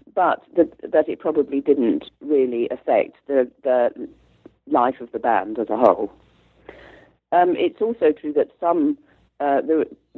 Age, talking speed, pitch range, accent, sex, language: 50-69, 145 wpm, 120-160 Hz, British, female, English